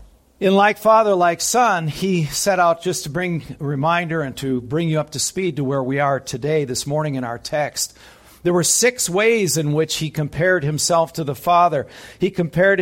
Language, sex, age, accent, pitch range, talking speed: English, male, 50-69, American, 140-180 Hz, 205 wpm